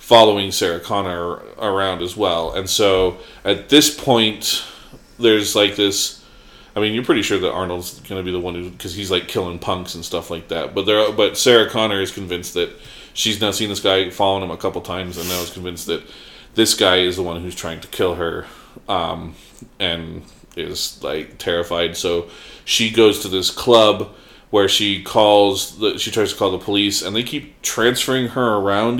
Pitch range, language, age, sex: 100-150 Hz, English, 30-49, male